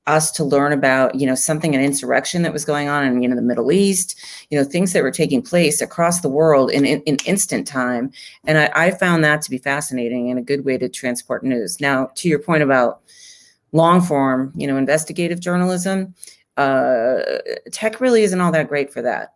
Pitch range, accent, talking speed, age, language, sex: 135-160 Hz, American, 215 wpm, 30-49, English, female